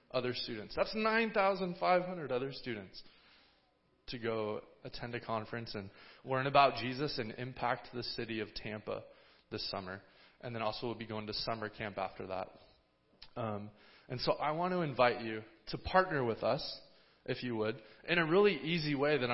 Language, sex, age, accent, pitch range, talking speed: English, male, 20-39, American, 110-135 Hz, 170 wpm